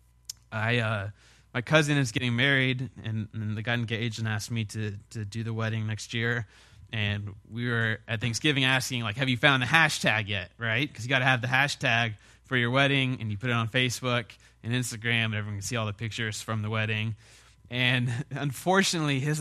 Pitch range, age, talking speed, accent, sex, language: 110-140 Hz, 20-39, 205 wpm, American, male, English